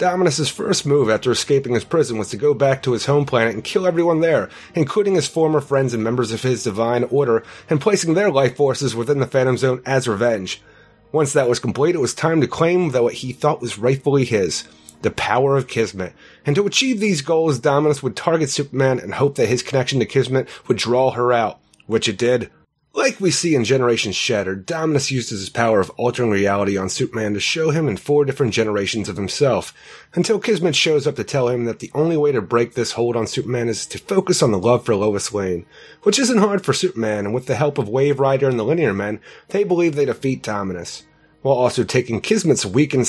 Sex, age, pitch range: male, 30-49, 115-155 Hz